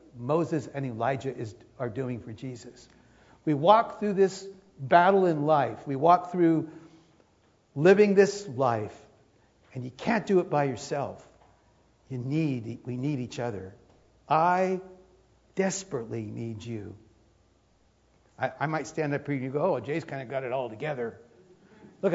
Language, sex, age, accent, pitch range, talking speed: English, male, 60-79, American, 135-205 Hz, 150 wpm